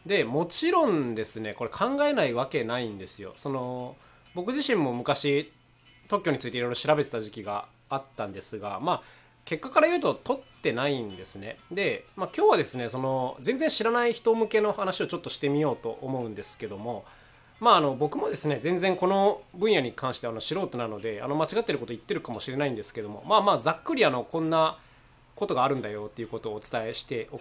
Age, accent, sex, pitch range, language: 20-39, native, male, 115-160 Hz, Japanese